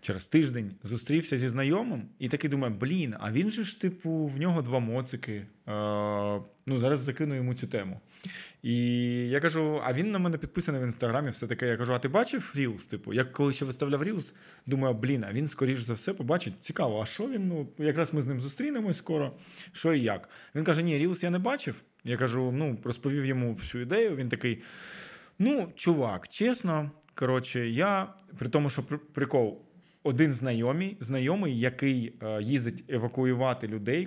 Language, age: Ukrainian, 20-39